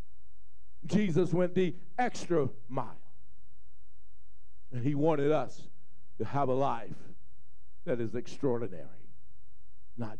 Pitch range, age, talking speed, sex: 85-130 Hz, 50-69, 100 wpm, male